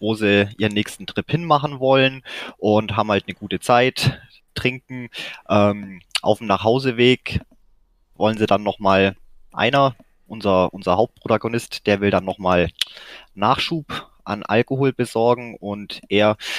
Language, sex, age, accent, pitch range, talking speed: German, male, 20-39, German, 95-120 Hz, 135 wpm